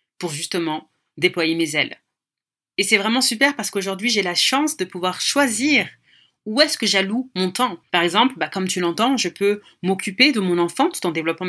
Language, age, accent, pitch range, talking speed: French, 30-49, French, 180-235 Hz, 200 wpm